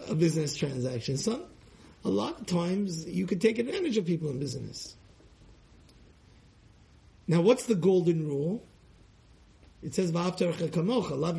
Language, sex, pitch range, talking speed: English, male, 165-230 Hz, 125 wpm